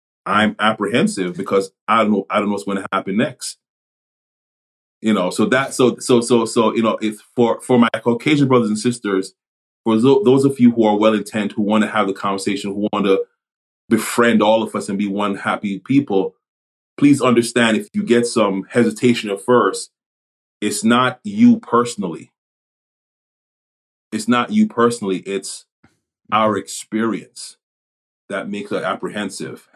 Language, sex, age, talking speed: English, male, 30-49, 165 wpm